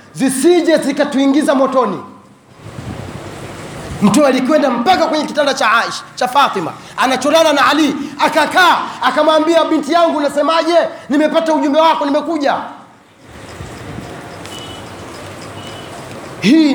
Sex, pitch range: male, 280-330 Hz